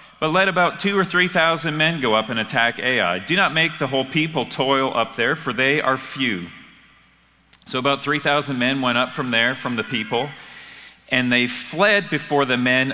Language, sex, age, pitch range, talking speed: English, male, 40-59, 125-155 Hz, 205 wpm